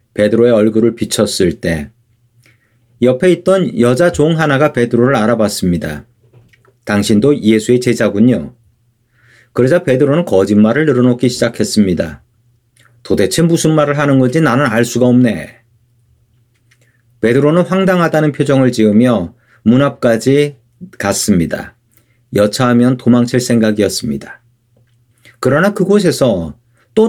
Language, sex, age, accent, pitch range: Korean, male, 40-59, native, 115-145 Hz